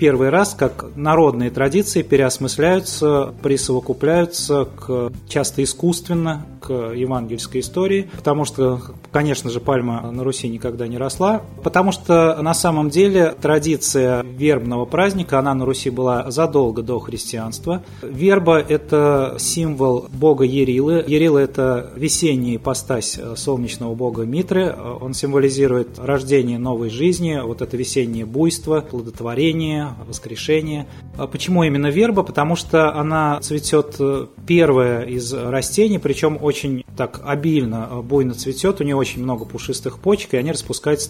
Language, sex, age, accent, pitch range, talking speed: Russian, male, 20-39, native, 125-155 Hz, 130 wpm